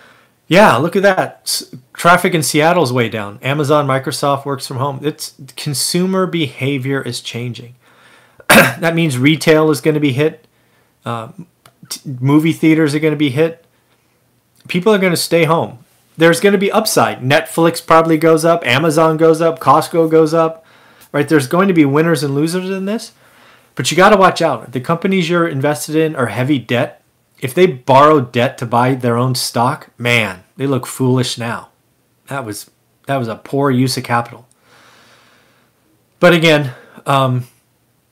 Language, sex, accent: English, male, American